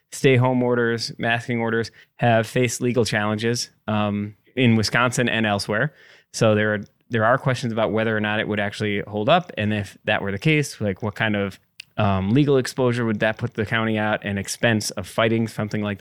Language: English